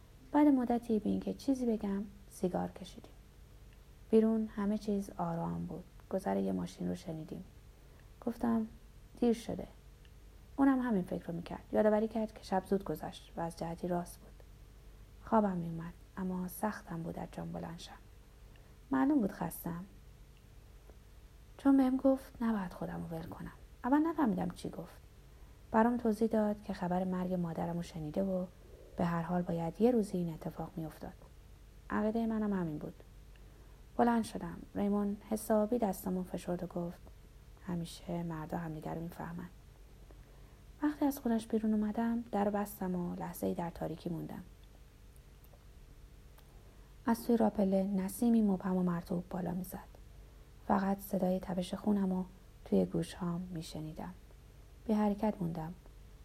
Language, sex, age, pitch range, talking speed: Persian, female, 30-49, 170-220 Hz, 140 wpm